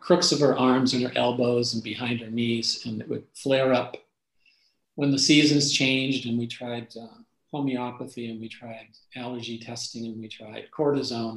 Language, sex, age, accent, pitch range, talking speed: English, male, 50-69, American, 115-140 Hz, 180 wpm